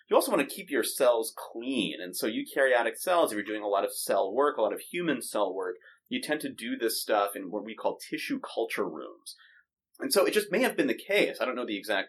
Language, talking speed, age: English, 265 wpm, 30-49